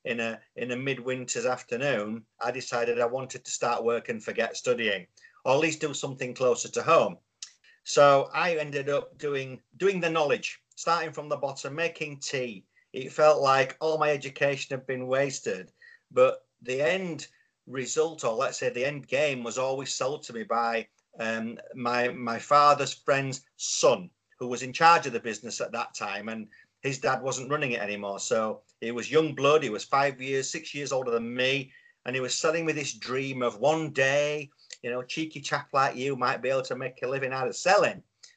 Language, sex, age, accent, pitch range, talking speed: English, male, 40-59, British, 125-155 Hz, 195 wpm